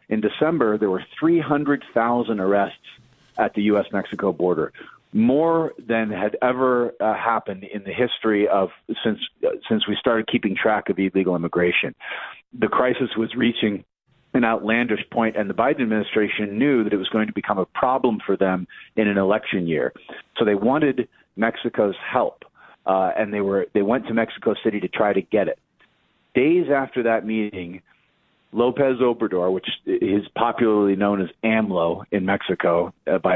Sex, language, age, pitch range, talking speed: male, English, 40-59, 100-125 Hz, 165 wpm